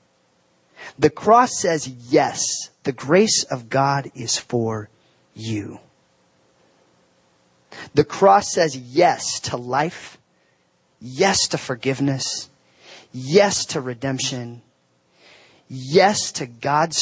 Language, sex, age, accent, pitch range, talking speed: English, male, 30-49, American, 115-170 Hz, 90 wpm